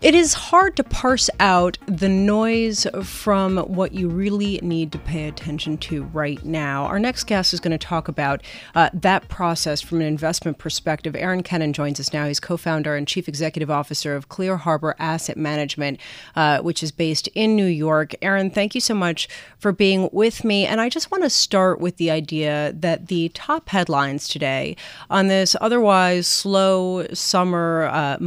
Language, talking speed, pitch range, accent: English, 185 wpm, 155-195 Hz, American